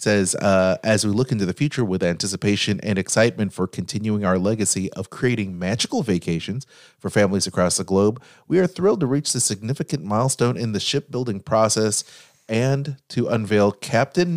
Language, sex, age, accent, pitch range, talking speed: English, male, 30-49, American, 95-130 Hz, 175 wpm